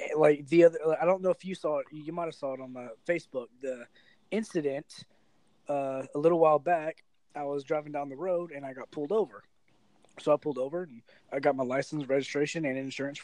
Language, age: English, 20-39